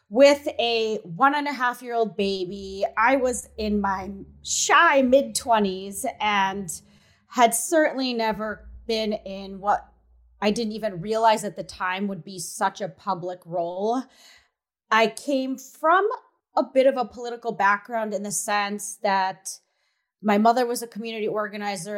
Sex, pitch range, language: female, 195-230 Hz, English